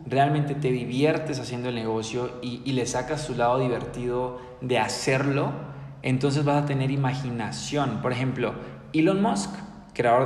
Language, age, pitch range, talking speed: Spanish, 20-39, 115-140 Hz, 145 wpm